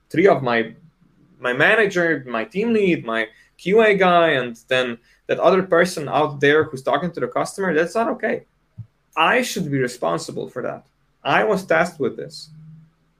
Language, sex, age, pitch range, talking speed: English, male, 20-39, 120-155 Hz, 170 wpm